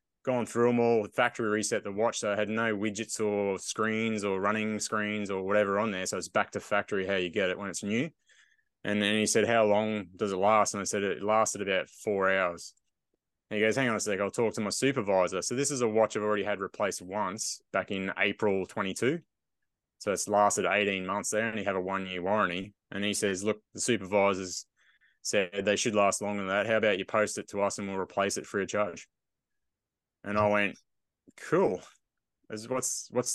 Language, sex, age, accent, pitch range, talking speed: English, male, 20-39, Australian, 100-110 Hz, 220 wpm